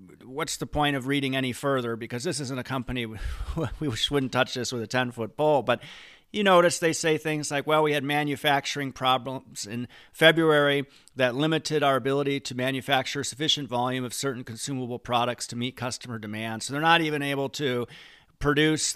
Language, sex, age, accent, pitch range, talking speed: English, male, 40-59, American, 120-145 Hz, 180 wpm